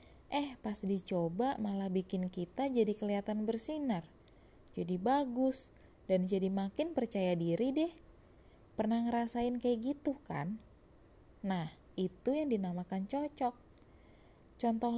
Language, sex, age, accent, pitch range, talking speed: Indonesian, female, 20-39, native, 180-240 Hz, 110 wpm